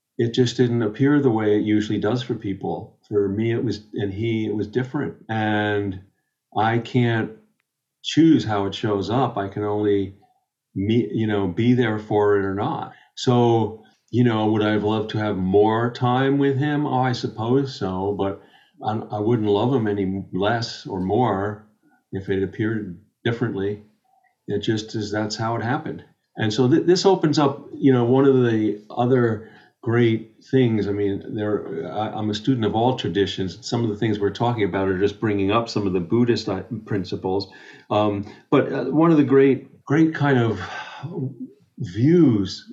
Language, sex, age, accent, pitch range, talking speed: English, male, 50-69, American, 105-125 Hz, 175 wpm